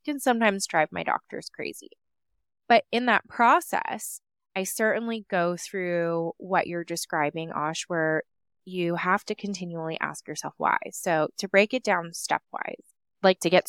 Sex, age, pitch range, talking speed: female, 20-39, 160-205 Hz, 155 wpm